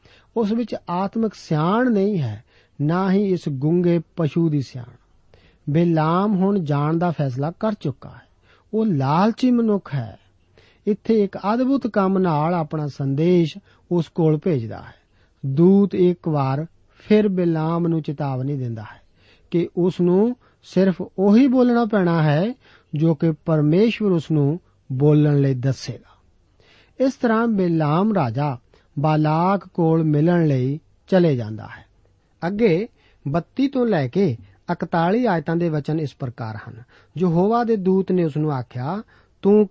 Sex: male